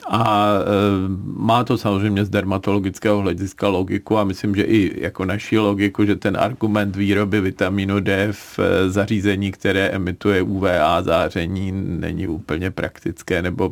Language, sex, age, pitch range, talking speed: Czech, male, 40-59, 95-110 Hz, 135 wpm